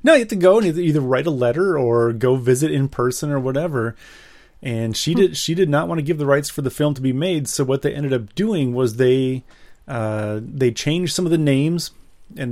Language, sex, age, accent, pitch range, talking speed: English, male, 30-49, American, 115-145 Hz, 240 wpm